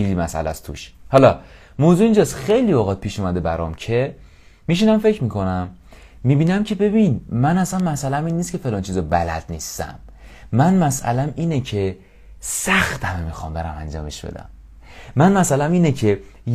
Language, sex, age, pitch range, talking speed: English, male, 30-49, 95-150 Hz, 150 wpm